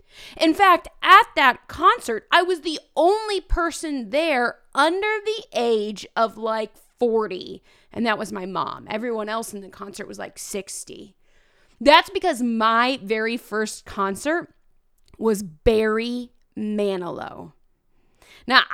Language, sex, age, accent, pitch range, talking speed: English, female, 20-39, American, 215-285 Hz, 130 wpm